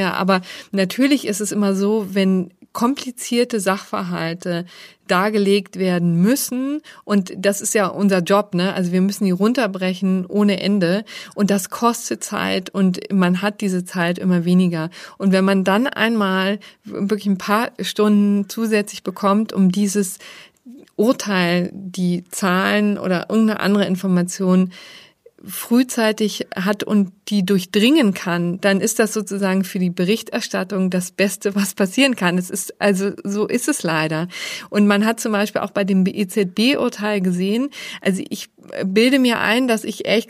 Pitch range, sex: 190-220 Hz, female